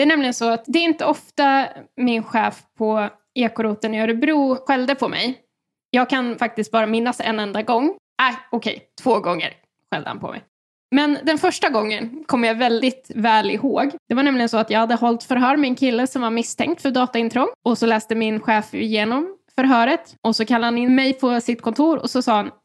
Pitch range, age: 215-260 Hz, 10-29